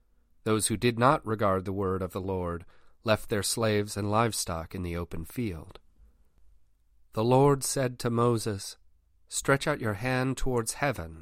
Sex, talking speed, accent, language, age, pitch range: male, 160 wpm, American, English, 40-59, 95-125 Hz